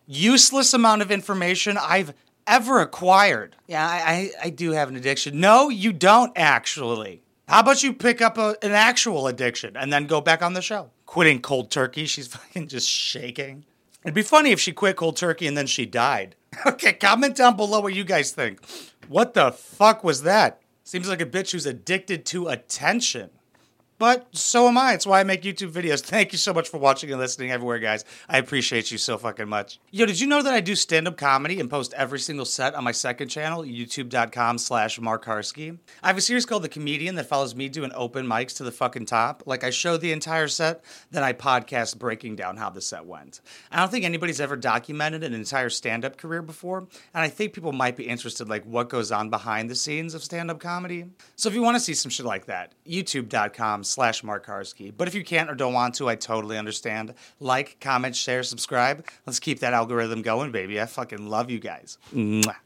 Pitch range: 125-190 Hz